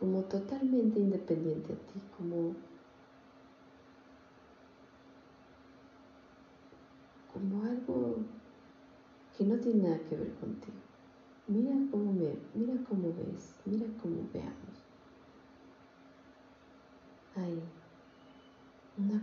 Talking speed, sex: 75 wpm, female